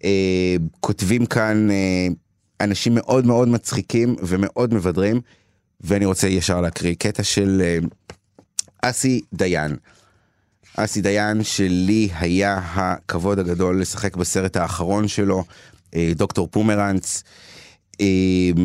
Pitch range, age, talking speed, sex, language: 95-115 Hz, 30-49, 105 wpm, male, Hebrew